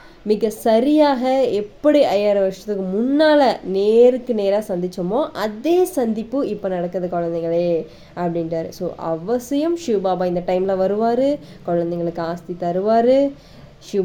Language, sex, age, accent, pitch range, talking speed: Tamil, female, 20-39, native, 180-235 Hz, 105 wpm